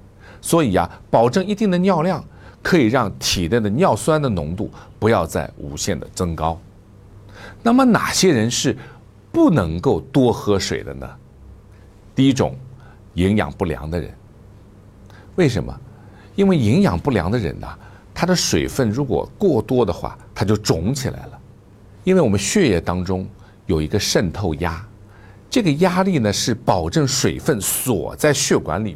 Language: Chinese